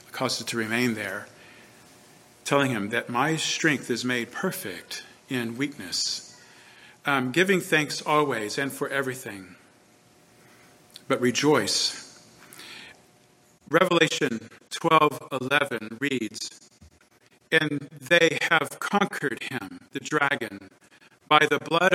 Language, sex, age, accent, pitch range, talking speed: English, male, 50-69, American, 120-160 Hz, 105 wpm